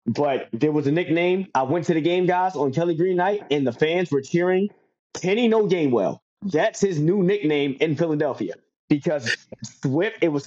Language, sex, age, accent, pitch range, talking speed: English, male, 20-39, American, 145-185 Hz, 195 wpm